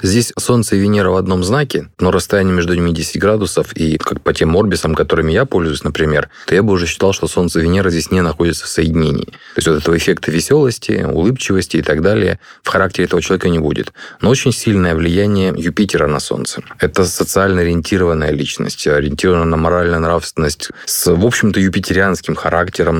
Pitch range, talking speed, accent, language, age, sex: 80-100 Hz, 190 wpm, native, Russian, 20-39, male